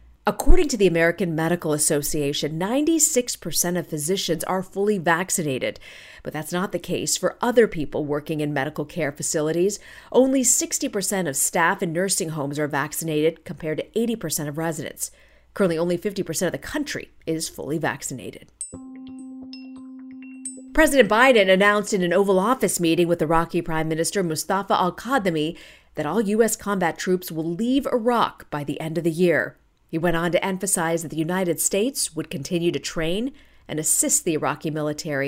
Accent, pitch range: American, 160-215 Hz